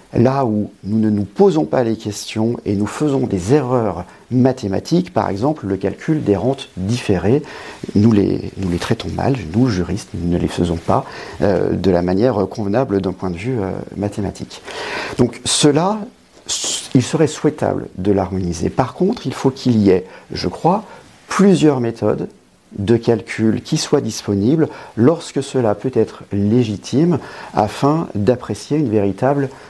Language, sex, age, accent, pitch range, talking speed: French, male, 50-69, French, 95-130 Hz, 155 wpm